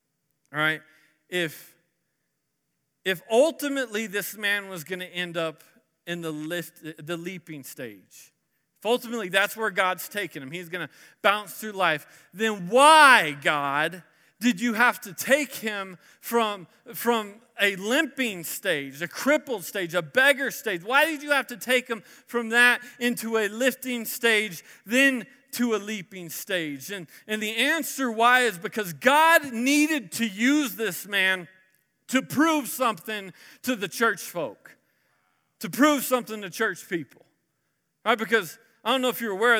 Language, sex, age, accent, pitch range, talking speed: English, male, 40-59, American, 175-240 Hz, 155 wpm